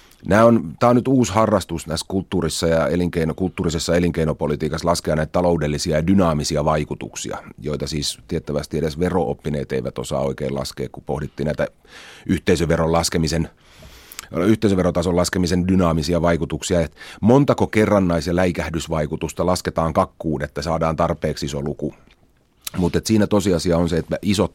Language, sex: Finnish, male